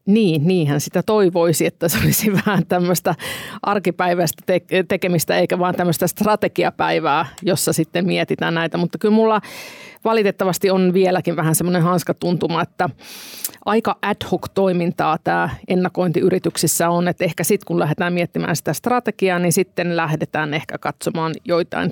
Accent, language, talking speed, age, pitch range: native, Finnish, 140 wpm, 50-69, 160-185 Hz